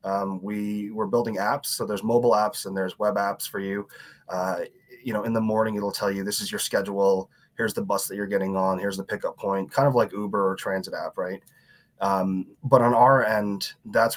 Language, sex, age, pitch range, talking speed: English, male, 20-39, 95-125 Hz, 225 wpm